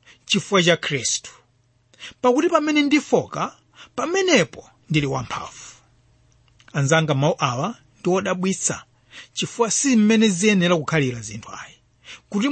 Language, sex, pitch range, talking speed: English, male, 130-215 Hz, 100 wpm